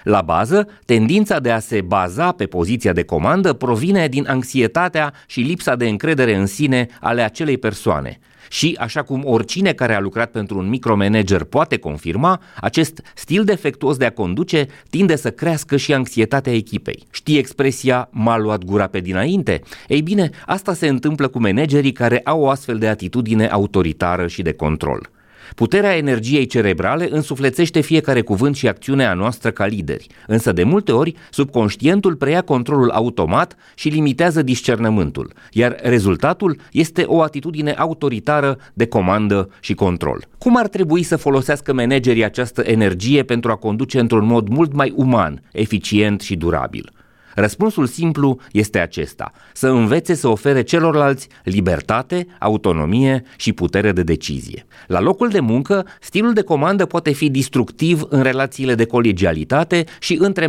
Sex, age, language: male, 30-49, Romanian